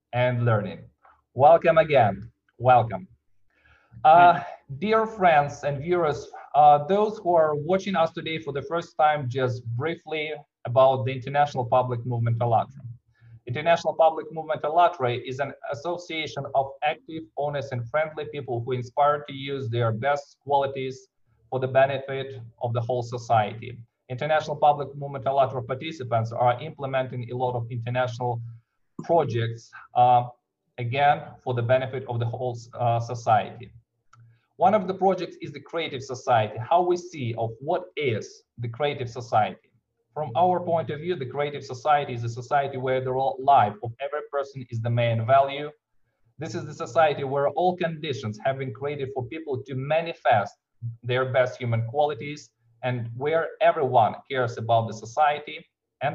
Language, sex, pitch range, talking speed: English, male, 120-150 Hz, 150 wpm